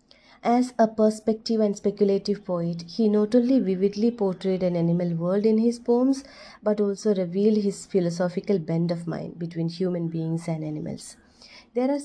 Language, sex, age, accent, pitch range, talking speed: English, female, 30-49, Indian, 170-215 Hz, 160 wpm